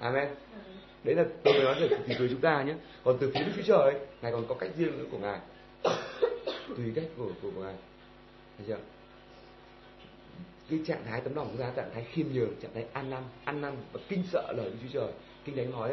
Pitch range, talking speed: 120-160 Hz, 230 wpm